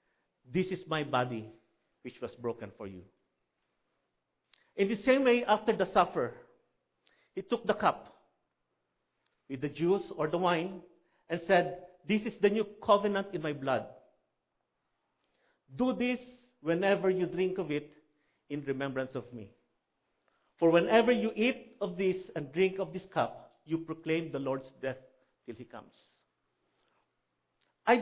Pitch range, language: 140-195 Hz, English